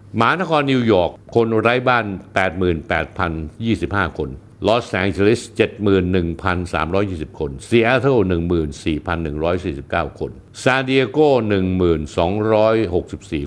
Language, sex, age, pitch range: Thai, male, 60-79, 90-120 Hz